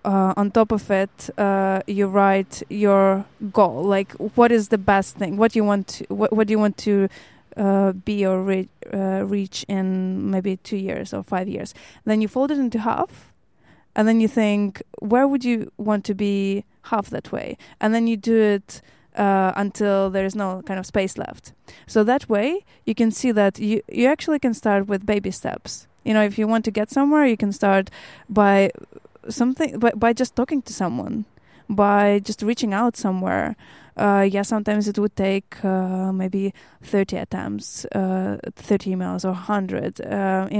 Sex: female